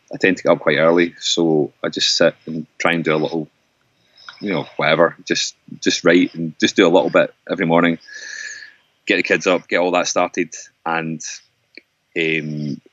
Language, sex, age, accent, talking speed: English, male, 30-49, British, 190 wpm